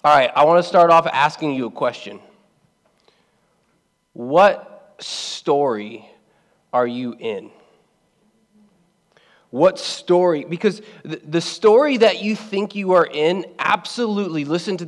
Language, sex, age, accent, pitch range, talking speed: English, male, 20-39, American, 150-185 Hz, 120 wpm